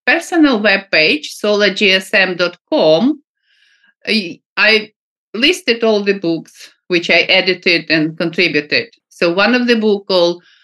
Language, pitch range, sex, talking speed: English, 170-225 Hz, female, 105 wpm